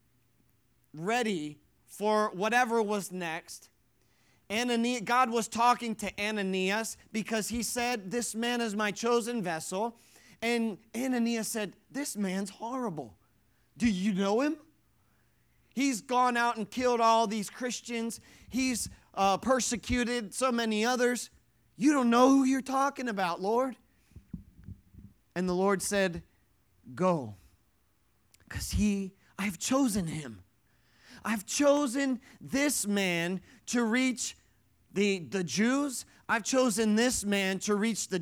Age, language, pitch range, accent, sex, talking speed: 30-49, English, 180-240 Hz, American, male, 120 wpm